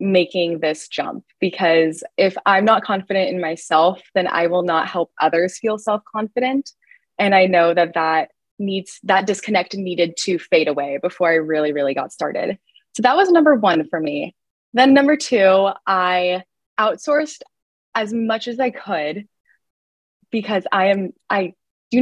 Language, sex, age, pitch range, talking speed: English, female, 20-39, 180-225 Hz, 160 wpm